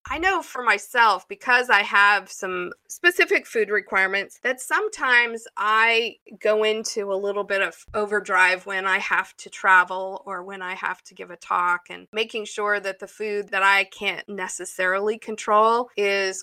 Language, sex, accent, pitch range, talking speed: English, female, American, 185-220 Hz, 170 wpm